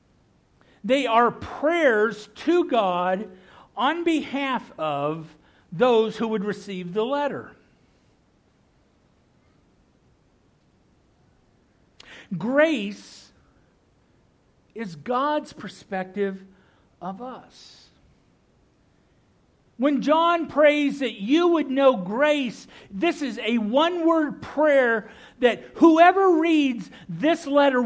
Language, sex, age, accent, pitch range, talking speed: English, male, 50-69, American, 205-295 Hz, 80 wpm